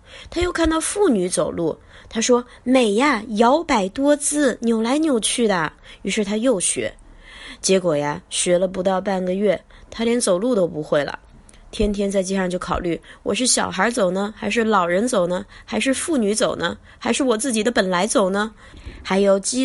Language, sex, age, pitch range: Chinese, female, 20-39, 190-255 Hz